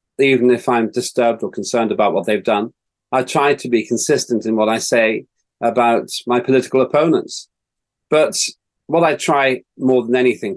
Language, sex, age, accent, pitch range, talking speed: English, male, 40-59, British, 120-175 Hz, 170 wpm